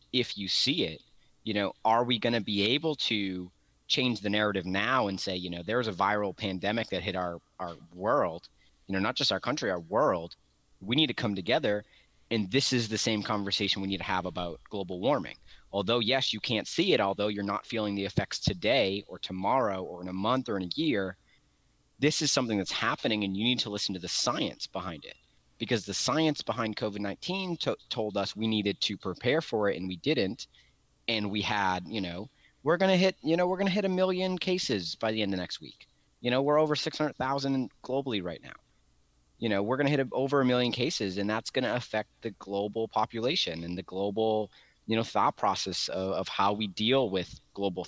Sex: male